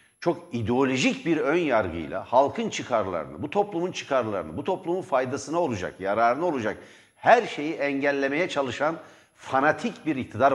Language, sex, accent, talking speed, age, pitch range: Turkish, male, native, 125 wpm, 60-79, 125-185 Hz